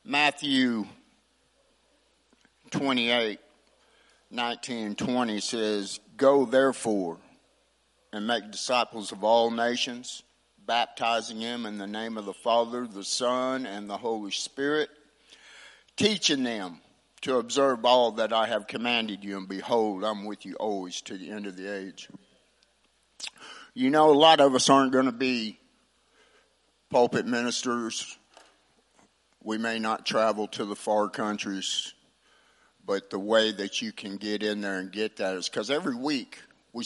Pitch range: 105-130 Hz